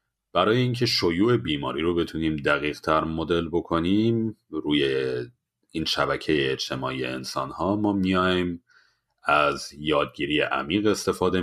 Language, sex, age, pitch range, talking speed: Persian, male, 40-59, 75-90 Hz, 115 wpm